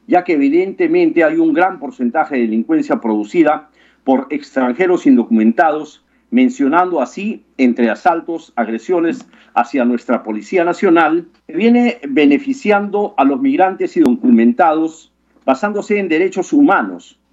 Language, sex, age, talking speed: Spanish, male, 50-69, 110 wpm